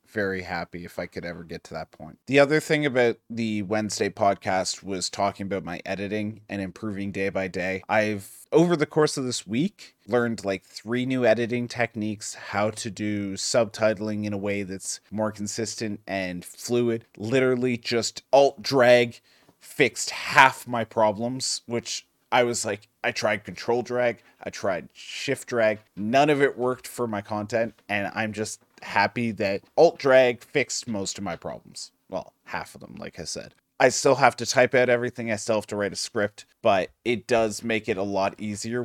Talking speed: 185 wpm